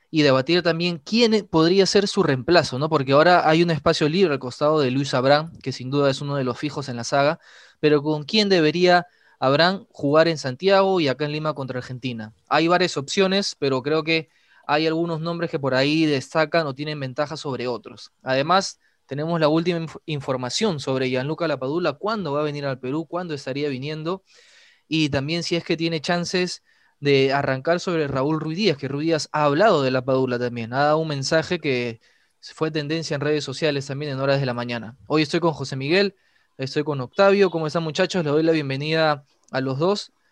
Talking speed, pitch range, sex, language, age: 200 wpm, 140-170 Hz, male, Spanish, 20-39